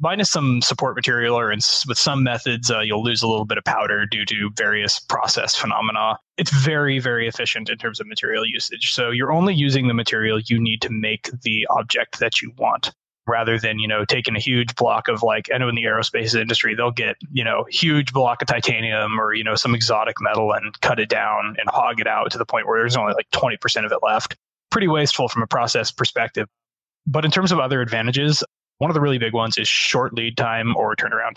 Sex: male